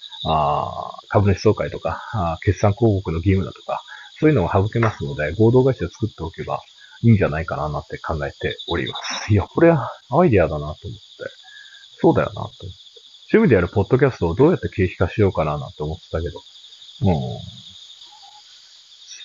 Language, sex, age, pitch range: Japanese, male, 40-59, 95-130 Hz